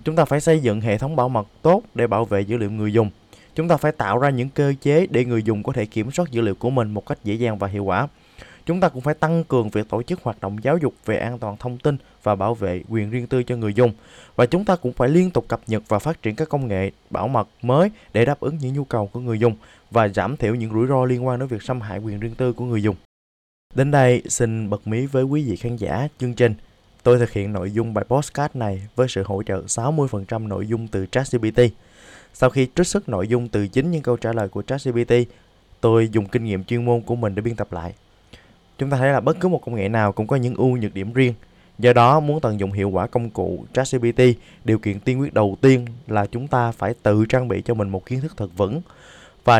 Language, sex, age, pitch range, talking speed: Vietnamese, male, 20-39, 105-130 Hz, 265 wpm